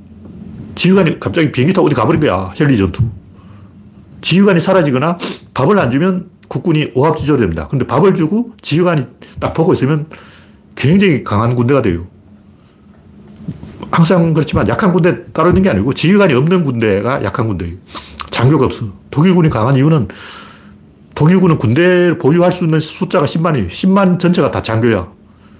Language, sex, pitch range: Korean, male, 105-160 Hz